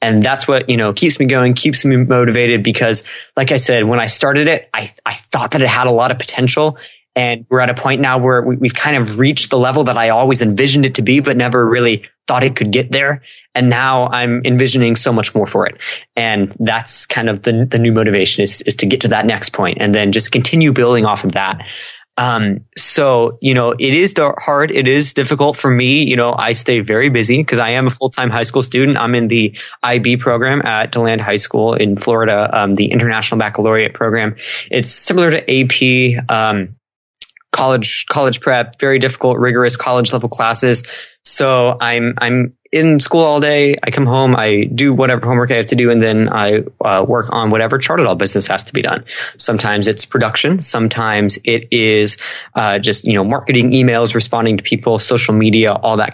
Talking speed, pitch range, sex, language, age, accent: 210 wpm, 115-130 Hz, male, English, 20-39, American